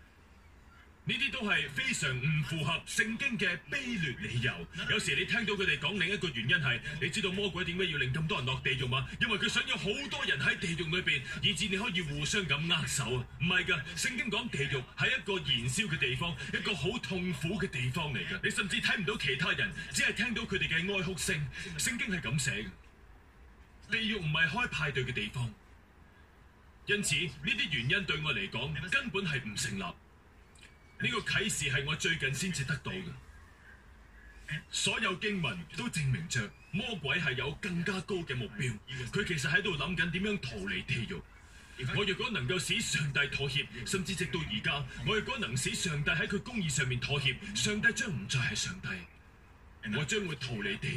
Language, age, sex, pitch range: Chinese, 30-49, male, 125-195 Hz